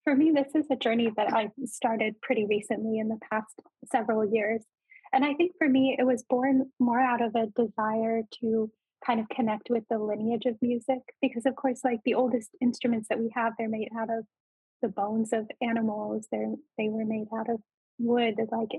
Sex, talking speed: female, 205 wpm